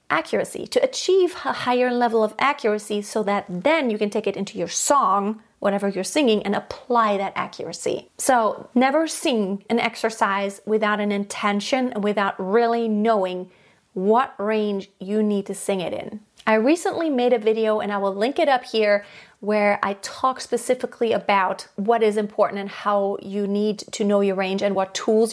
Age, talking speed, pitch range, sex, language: 30-49, 180 wpm, 210-250 Hz, female, English